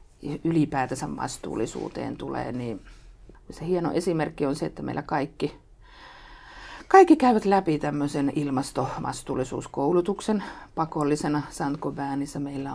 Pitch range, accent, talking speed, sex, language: 130-155 Hz, native, 95 wpm, female, Finnish